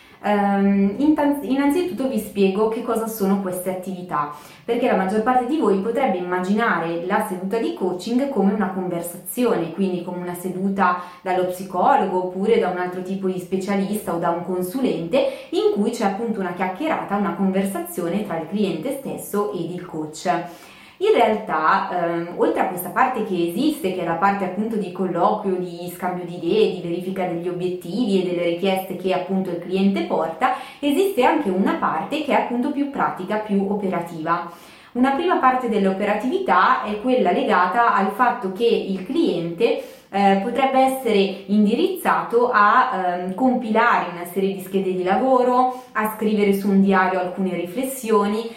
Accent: native